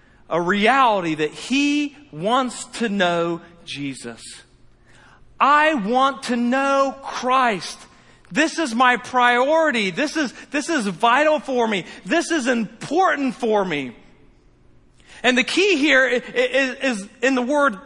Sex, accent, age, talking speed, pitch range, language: male, American, 40-59, 130 wpm, 200-275 Hz, English